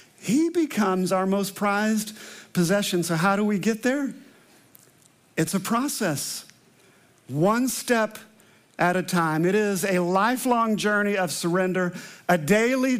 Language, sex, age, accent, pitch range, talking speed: English, male, 50-69, American, 180-220 Hz, 135 wpm